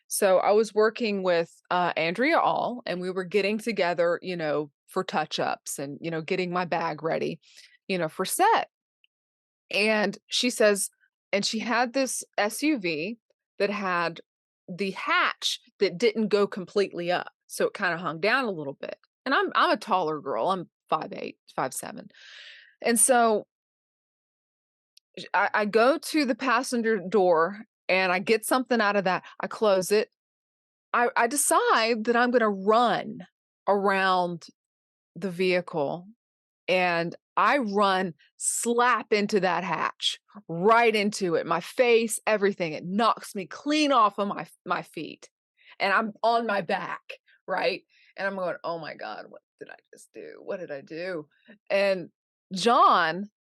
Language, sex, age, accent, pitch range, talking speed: English, female, 20-39, American, 180-235 Hz, 155 wpm